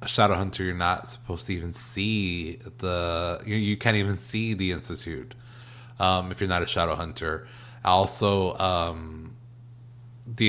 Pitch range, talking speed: 90-120 Hz, 155 wpm